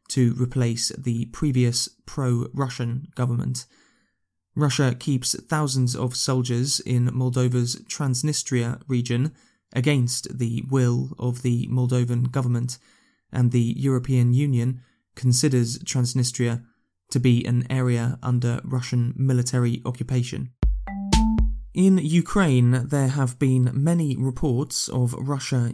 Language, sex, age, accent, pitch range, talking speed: English, male, 20-39, British, 120-135 Hz, 105 wpm